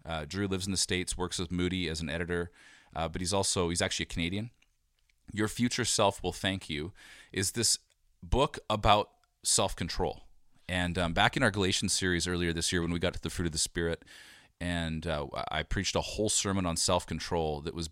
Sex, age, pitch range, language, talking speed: male, 30-49, 85-100 Hz, English, 205 wpm